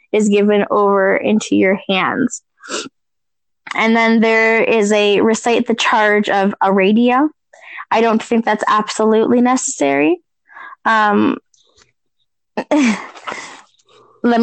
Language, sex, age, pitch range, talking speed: English, female, 10-29, 210-245 Hz, 105 wpm